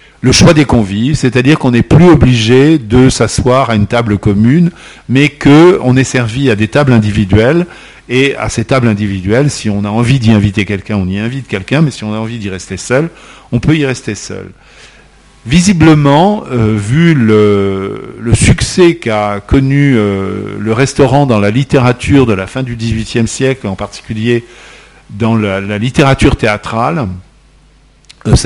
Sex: male